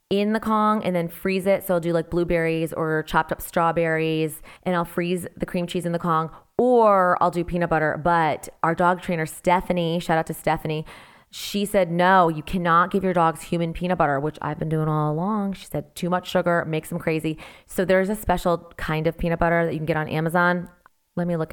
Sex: female